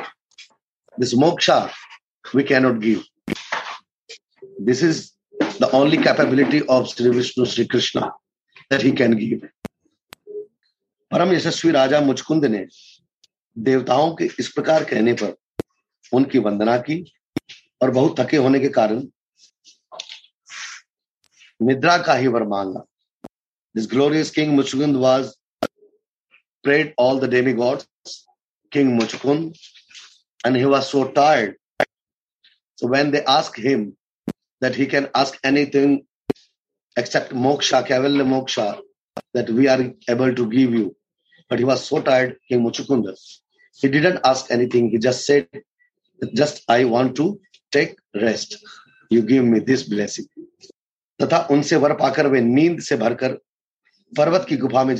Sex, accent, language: male, Indian, English